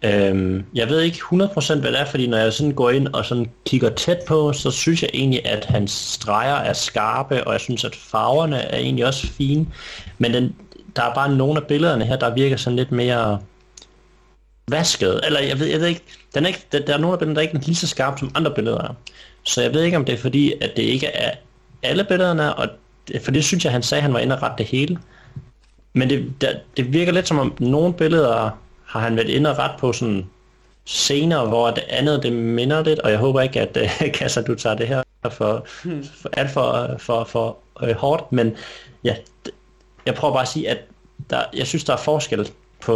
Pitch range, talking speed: 115-155 Hz, 230 wpm